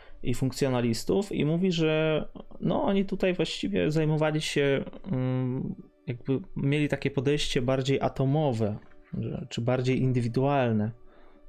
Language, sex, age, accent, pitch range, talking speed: Polish, male, 20-39, native, 120-140 Hz, 105 wpm